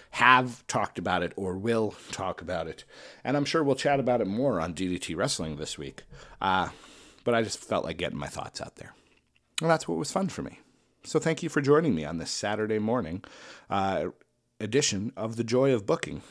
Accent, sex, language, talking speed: American, male, English, 210 wpm